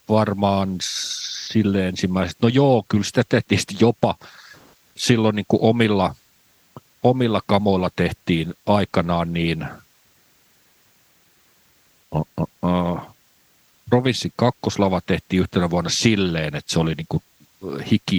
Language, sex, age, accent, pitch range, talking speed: Finnish, male, 50-69, native, 85-105 Hz, 100 wpm